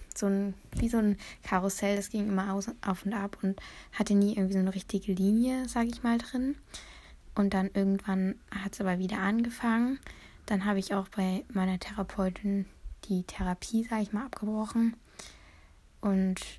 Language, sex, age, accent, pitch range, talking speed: German, female, 10-29, German, 195-225 Hz, 175 wpm